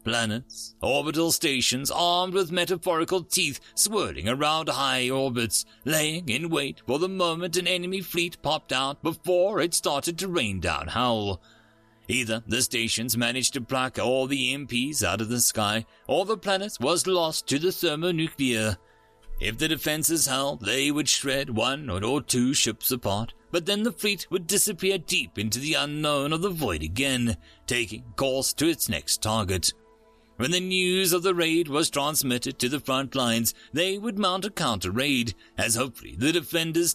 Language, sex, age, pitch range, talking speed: English, male, 30-49, 110-170 Hz, 165 wpm